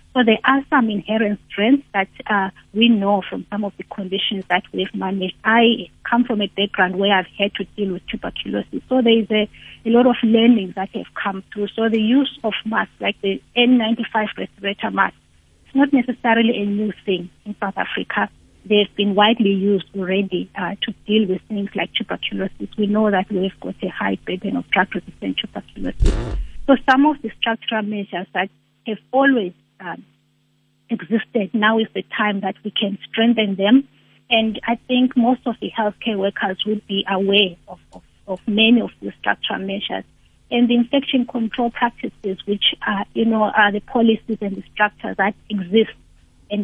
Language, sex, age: English, female, 30-49